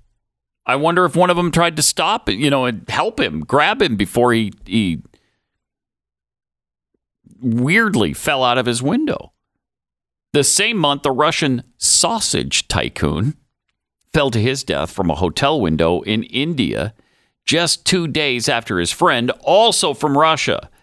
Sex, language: male, English